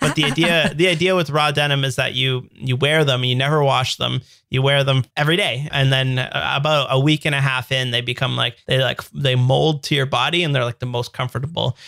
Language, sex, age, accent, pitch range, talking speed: English, male, 30-49, American, 130-155 Hz, 240 wpm